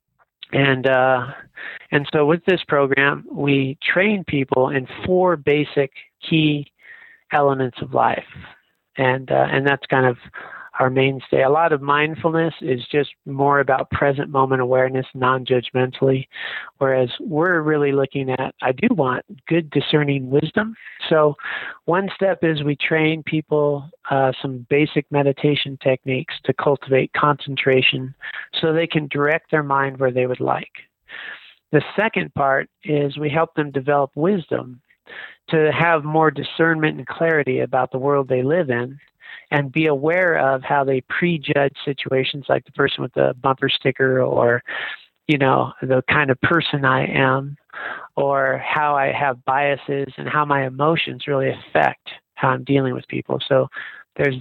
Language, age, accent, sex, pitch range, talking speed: English, 40-59, American, male, 135-155 Hz, 150 wpm